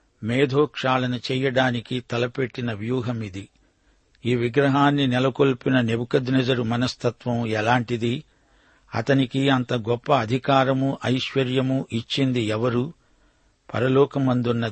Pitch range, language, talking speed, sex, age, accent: 120-135 Hz, Telugu, 75 wpm, male, 60-79, native